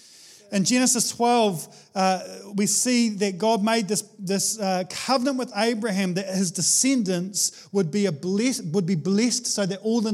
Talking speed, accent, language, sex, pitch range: 155 wpm, Australian, English, male, 175-225 Hz